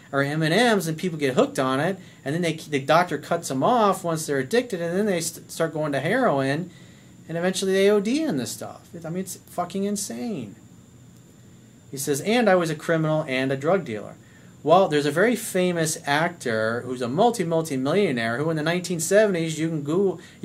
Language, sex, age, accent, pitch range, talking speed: English, male, 40-59, American, 140-190 Hz, 195 wpm